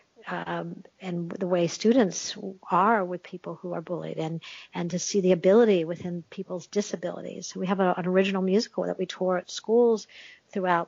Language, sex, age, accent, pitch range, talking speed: English, female, 50-69, American, 180-215 Hz, 175 wpm